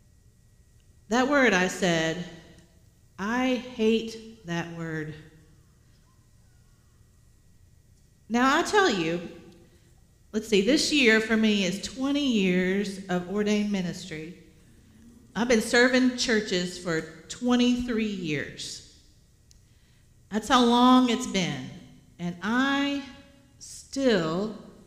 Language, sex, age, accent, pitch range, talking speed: English, female, 50-69, American, 180-250 Hz, 95 wpm